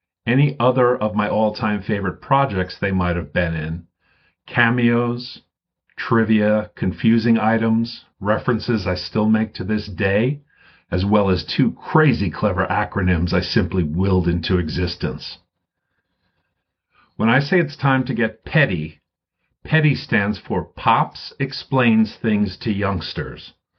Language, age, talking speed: English, 50-69, 130 wpm